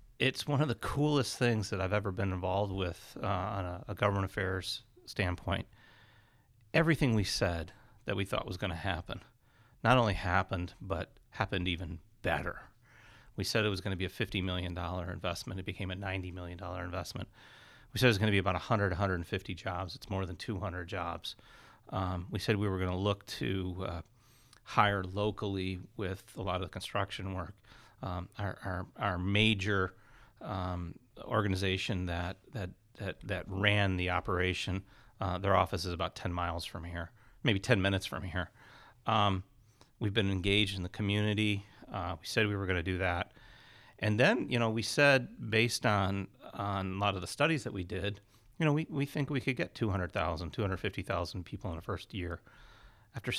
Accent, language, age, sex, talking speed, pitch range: American, English, 40-59, male, 185 wpm, 90-110 Hz